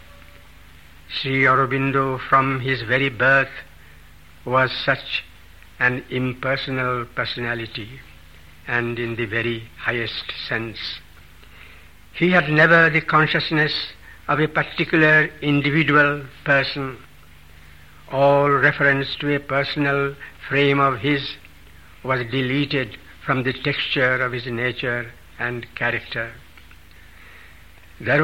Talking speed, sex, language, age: 100 wpm, male, English, 60-79